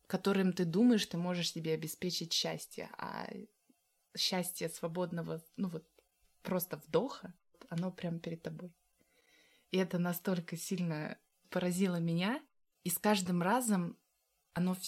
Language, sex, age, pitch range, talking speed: Russian, female, 20-39, 175-210 Hz, 120 wpm